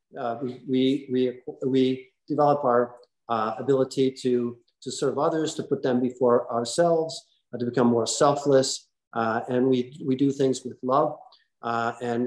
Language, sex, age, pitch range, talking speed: English, male, 50-69, 125-145 Hz, 160 wpm